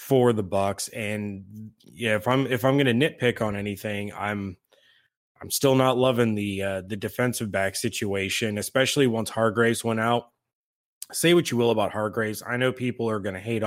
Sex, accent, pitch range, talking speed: male, American, 105-125 Hz, 180 wpm